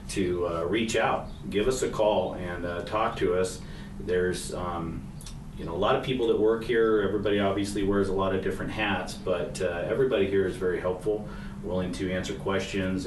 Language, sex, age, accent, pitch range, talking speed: English, male, 30-49, American, 90-105 Hz, 200 wpm